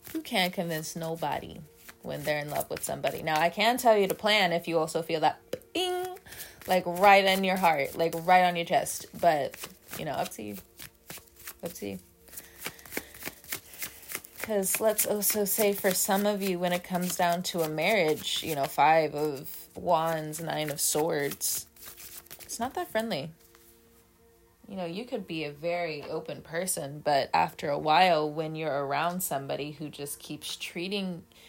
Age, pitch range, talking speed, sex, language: 20-39, 145-180 Hz, 170 wpm, female, English